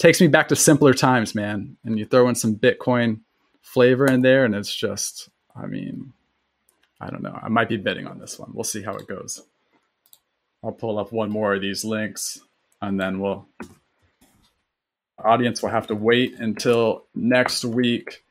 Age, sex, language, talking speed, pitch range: 20-39, male, English, 180 wpm, 105-150 Hz